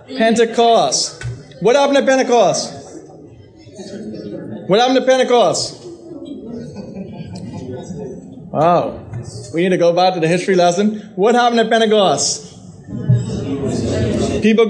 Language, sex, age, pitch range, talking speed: English, male, 20-39, 150-215 Hz, 100 wpm